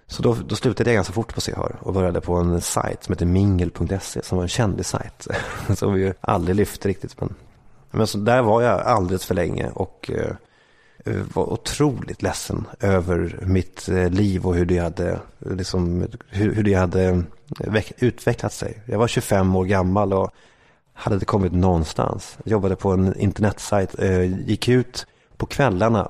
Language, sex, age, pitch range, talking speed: English, male, 30-49, 95-110 Hz, 175 wpm